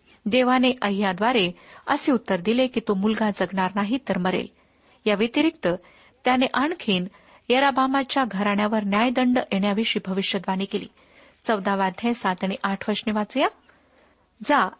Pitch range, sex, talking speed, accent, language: 200-260 Hz, female, 120 wpm, native, Marathi